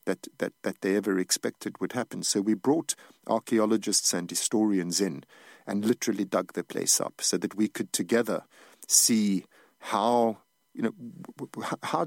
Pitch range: 95-120 Hz